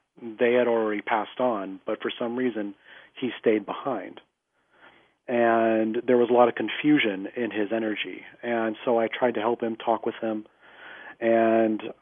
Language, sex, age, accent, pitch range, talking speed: English, male, 30-49, American, 110-120 Hz, 165 wpm